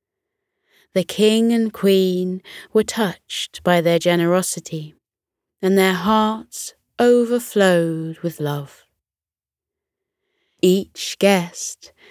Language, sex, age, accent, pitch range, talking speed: English, female, 20-39, British, 165-215 Hz, 85 wpm